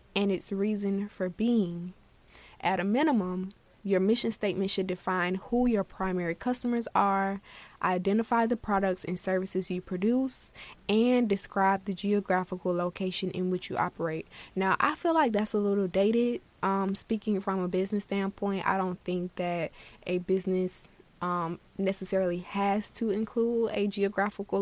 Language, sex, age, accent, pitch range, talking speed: English, female, 20-39, American, 185-210 Hz, 150 wpm